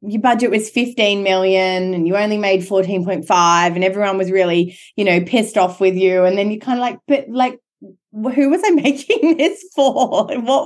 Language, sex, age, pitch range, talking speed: English, female, 20-39, 185-240 Hz, 195 wpm